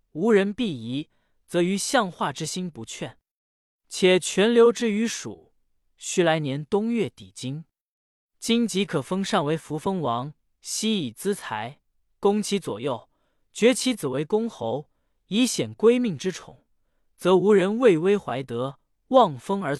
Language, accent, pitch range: Chinese, native, 150-220 Hz